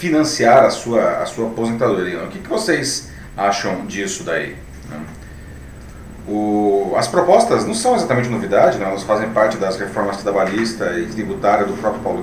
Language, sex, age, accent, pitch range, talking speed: Portuguese, male, 40-59, Brazilian, 100-130 Hz, 165 wpm